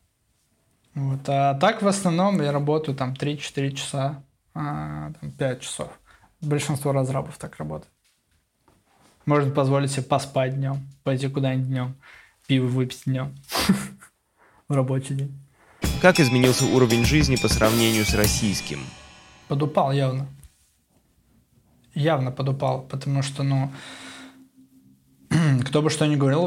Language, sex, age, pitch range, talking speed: Russian, male, 20-39, 130-145 Hz, 120 wpm